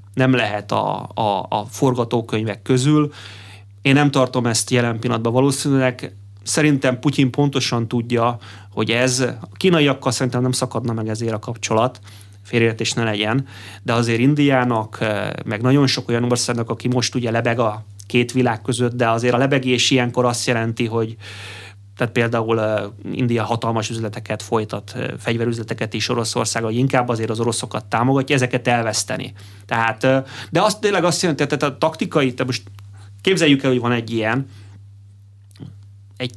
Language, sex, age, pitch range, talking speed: Hungarian, male, 30-49, 105-130 Hz, 150 wpm